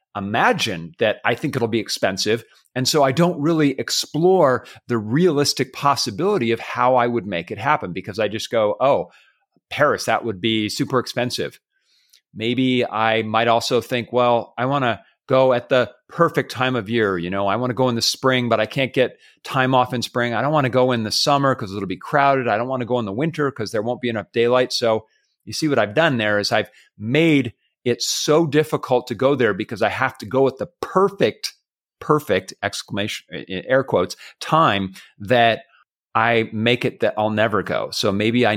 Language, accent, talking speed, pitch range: English, American, 205 wpm, 110-130 Hz